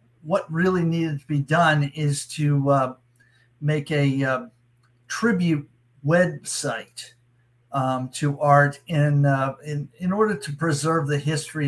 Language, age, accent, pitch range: English, 50-69, American, 125-155 Hz